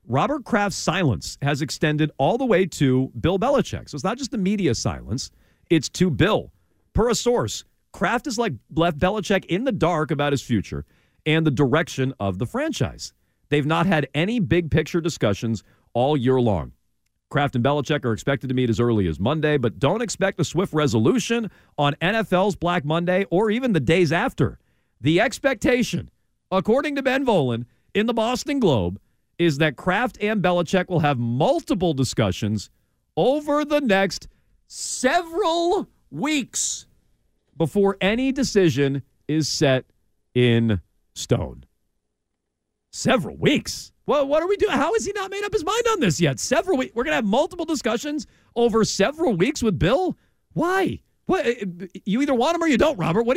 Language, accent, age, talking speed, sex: English, American, 40-59, 170 wpm, male